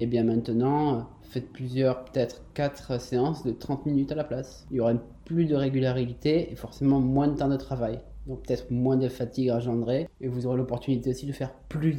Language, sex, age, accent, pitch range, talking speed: French, male, 20-39, French, 125-145 Hz, 205 wpm